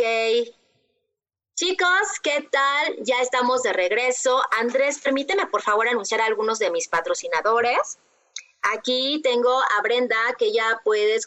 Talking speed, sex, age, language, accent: 135 wpm, female, 30-49, Spanish, Mexican